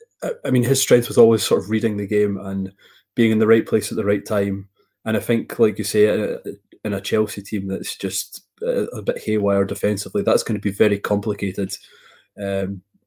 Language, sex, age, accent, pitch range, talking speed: English, male, 20-39, British, 100-110 Hz, 200 wpm